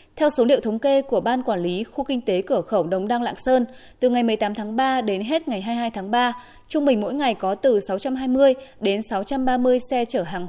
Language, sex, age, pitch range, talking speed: Vietnamese, female, 20-39, 205-270 Hz, 235 wpm